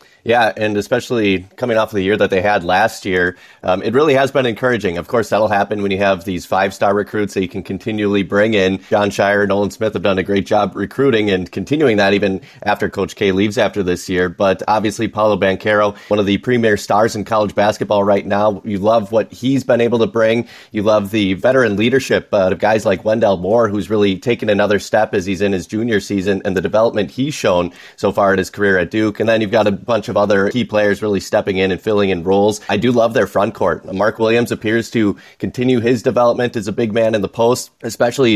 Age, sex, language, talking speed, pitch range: 30-49, male, English, 235 wpm, 100-115 Hz